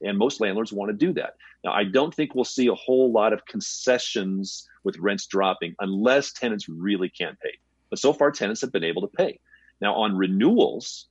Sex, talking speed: male, 205 wpm